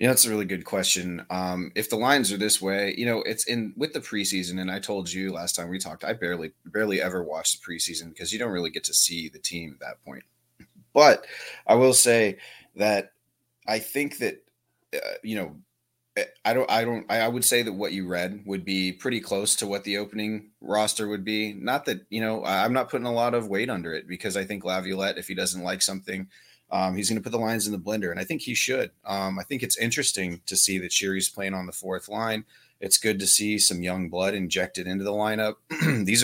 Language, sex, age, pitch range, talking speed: English, male, 30-49, 90-105 Hz, 235 wpm